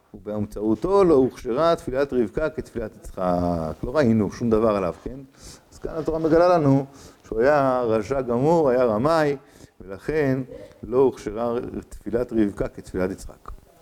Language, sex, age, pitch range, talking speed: Hebrew, male, 50-69, 110-150 Hz, 135 wpm